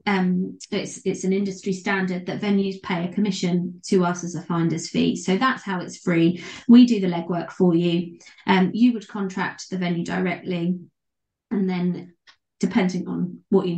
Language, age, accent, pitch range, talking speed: English, 20-39, British, 180-235 Hz, 180 wpm